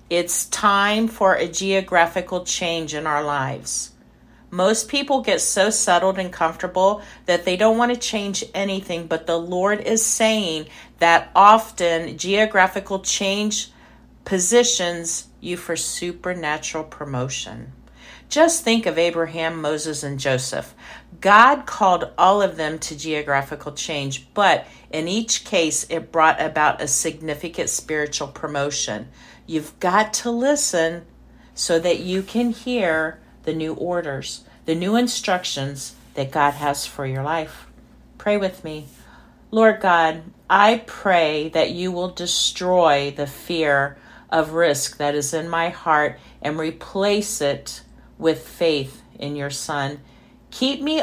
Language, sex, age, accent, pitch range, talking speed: English, female, 50-69, American, 155-200 Hz, 135 wpm